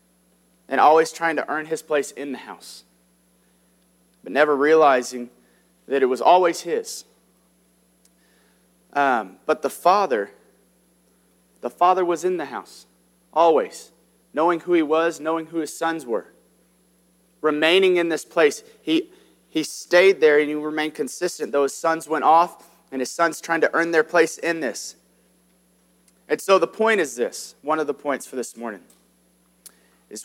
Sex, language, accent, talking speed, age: male, English, American, 155 wpm, 30-49